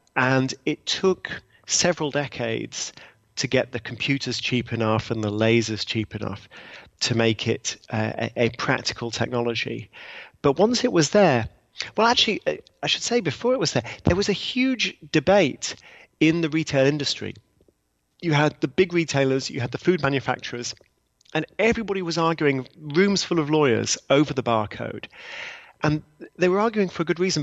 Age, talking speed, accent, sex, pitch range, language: 30-49, 165 wpm, British, male, 115-155 Hz, English